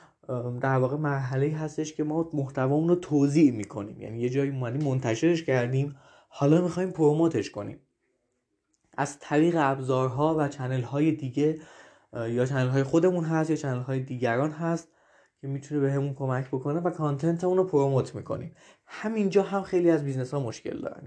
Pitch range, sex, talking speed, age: 135-165 Hz, male, 160 wpm, 20-39